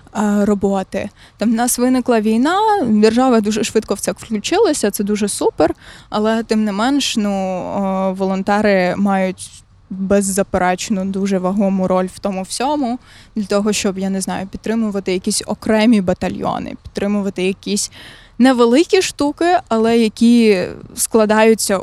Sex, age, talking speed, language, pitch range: female, 20-39, 125 wpm, Ukrainian, 205-265 Hz